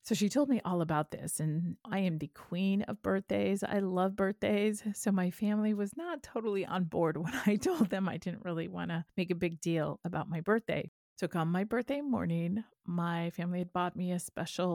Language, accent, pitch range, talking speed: English, American, 165-210 Hz, 215 wpm